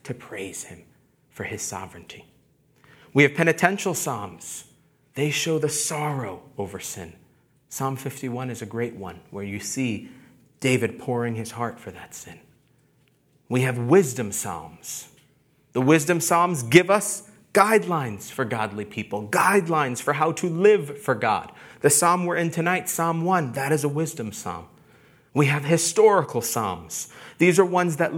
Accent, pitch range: American, 125-160 Hz